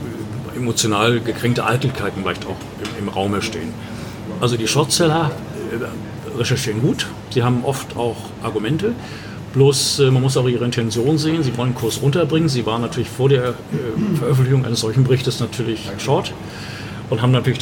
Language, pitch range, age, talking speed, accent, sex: German, 110-135 Hz, 40-59, 160 wpm, German, male